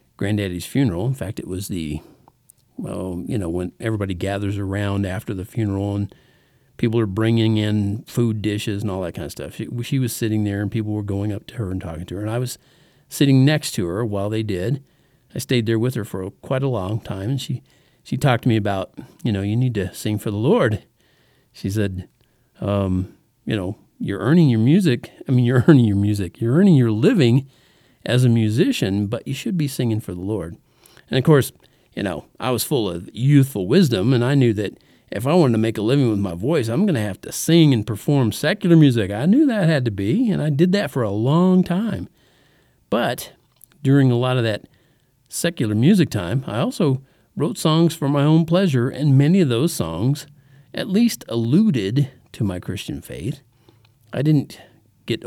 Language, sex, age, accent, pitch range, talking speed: English, male, 50-69, American, 105-140 Hz, 210 wpm